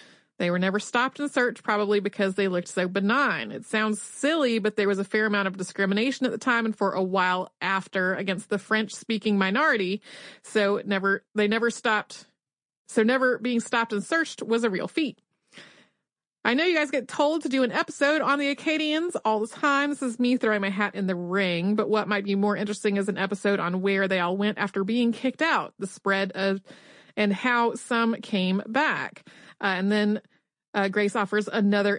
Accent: American